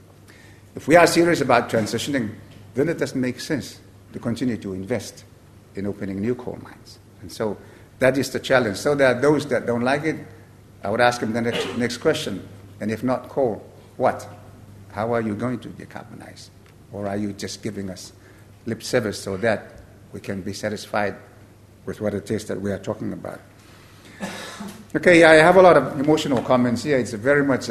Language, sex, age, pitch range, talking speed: English, male, 60-79, 100-125 Hz, 195 wpm